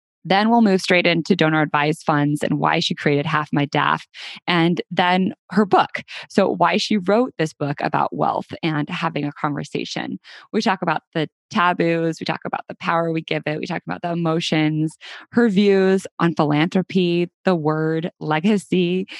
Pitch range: 155-195 Hz